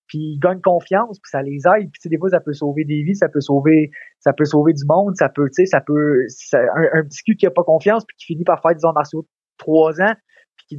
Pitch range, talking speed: 150-185 Hz, 295 wpm